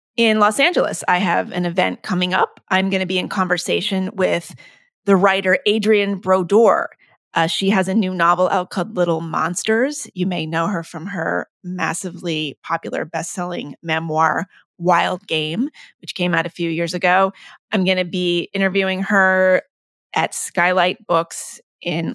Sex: female